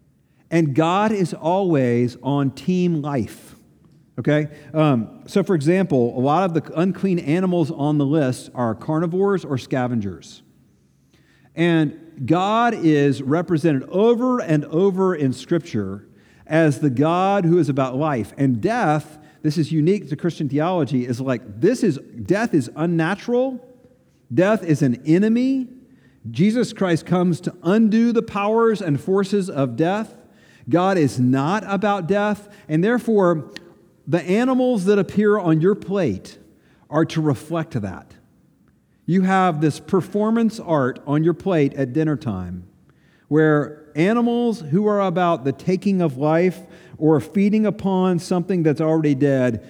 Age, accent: 50-69, American